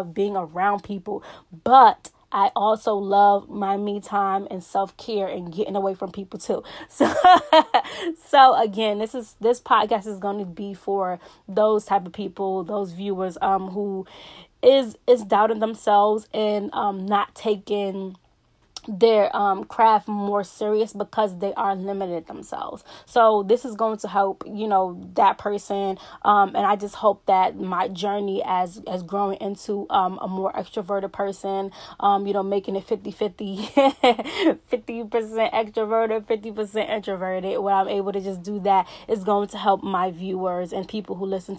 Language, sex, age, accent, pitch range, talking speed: English, female, 20-39, American, 195-220 Hz, 160 wpm